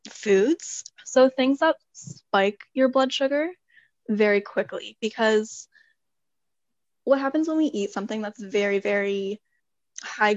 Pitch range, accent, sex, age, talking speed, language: 195-230 Hz, American, female, 10-29, 120 wpm, English